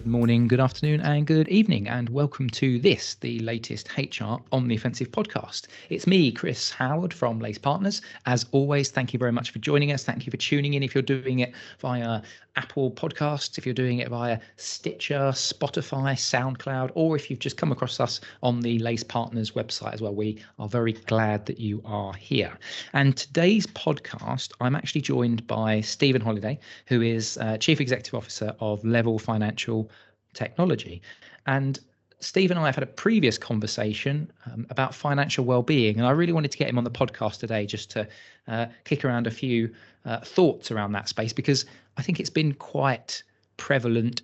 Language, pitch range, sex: English, 115-140 Hz, male